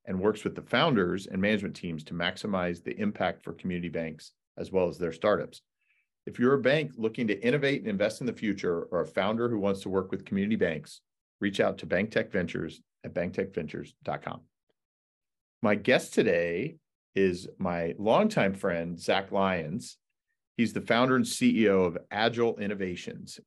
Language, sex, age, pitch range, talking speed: English, male, 40-59, 90-115 Hz, 165 wpm